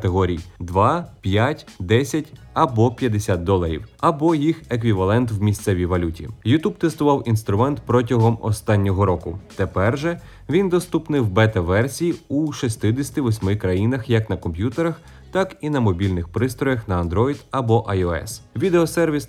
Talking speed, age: 130 wpm, 30-49